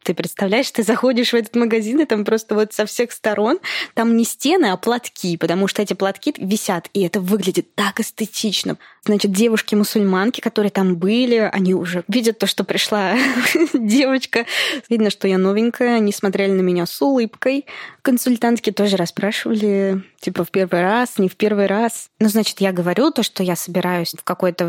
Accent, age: native, 20-39